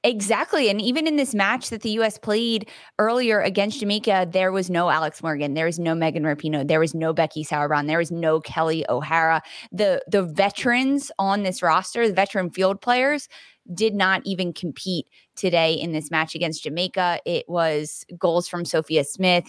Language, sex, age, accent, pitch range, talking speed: English, female, 20-39, American, 160-200 Hz, 180 wpm